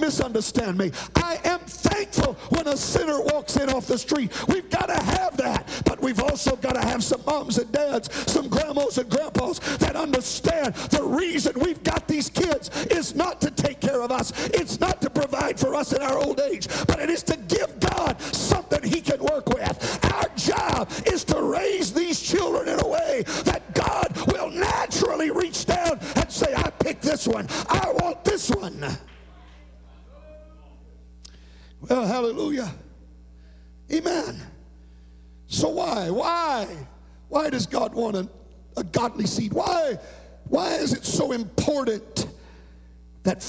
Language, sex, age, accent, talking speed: English, male, 50-69, American, 160 wpm